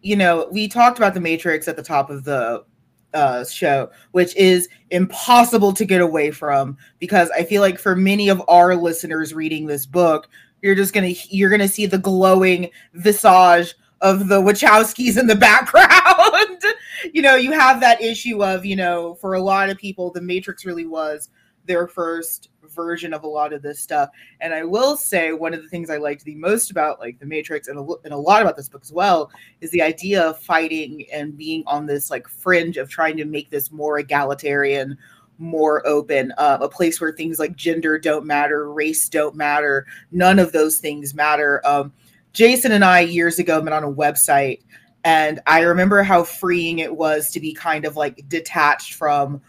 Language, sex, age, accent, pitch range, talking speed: English, female, 20-39, American, 150-190 Hz, 195 wpm